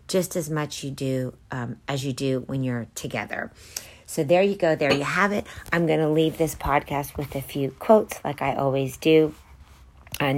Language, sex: English, female